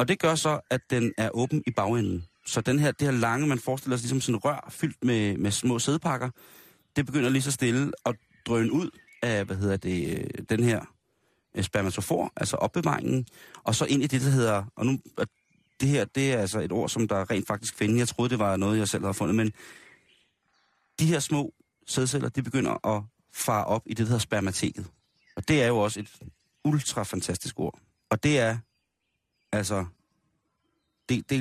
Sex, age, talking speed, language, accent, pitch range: male, 30-49, 195 wpm, Danish, native, 105-125 Hz